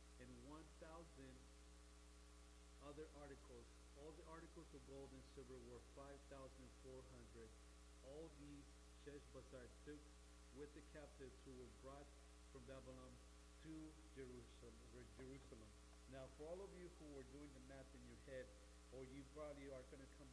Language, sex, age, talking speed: English, male, 50-69, 140 wpm